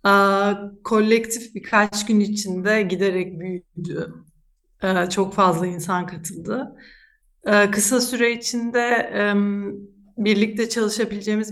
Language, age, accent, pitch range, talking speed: Turkish, 40-59, native, 185-215 Hz, 100 wpm